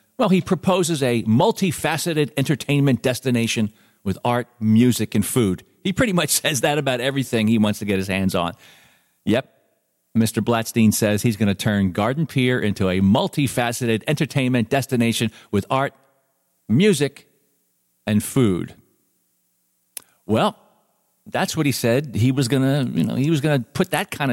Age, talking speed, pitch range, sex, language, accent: 40-59, 150 wpm, 105-135 Hz, male, English, American